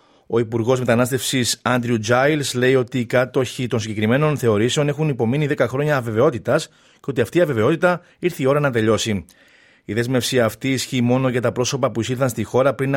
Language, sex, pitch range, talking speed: Greek, male, 115-135 Hz, 185 wpm